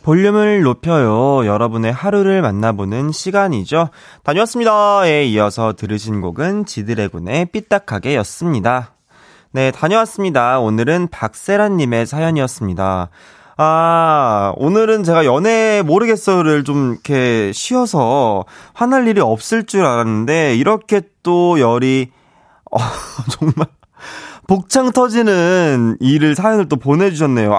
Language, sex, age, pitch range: Korean, male, 20-39, 130-215 Hz